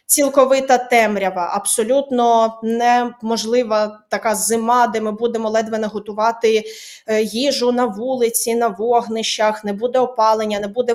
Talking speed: 115 wpm